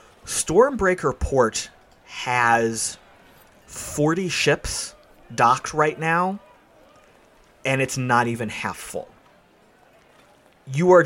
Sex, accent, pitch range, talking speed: male, American, 110-140 Hz, 85 wpm